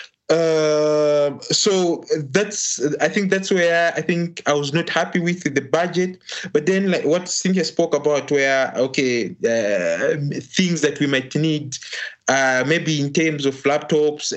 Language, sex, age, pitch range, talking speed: English, male, 20-39, 130-160 Hz, 155 wpm